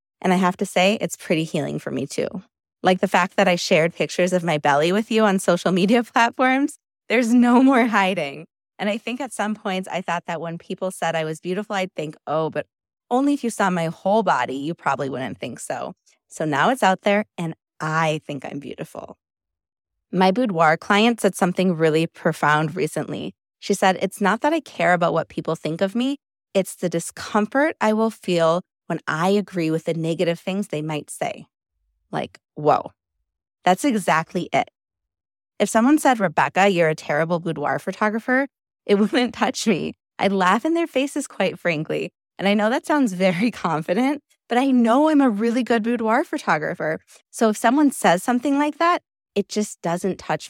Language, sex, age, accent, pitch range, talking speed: English, female, 20-39, American, 170-235 Hz, 190 wpm